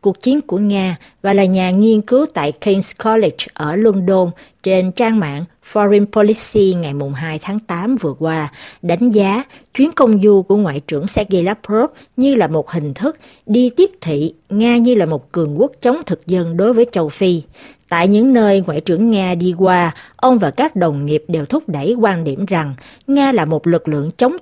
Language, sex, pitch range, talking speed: Vietnamese, female, 165-230 Hz, 200 wpm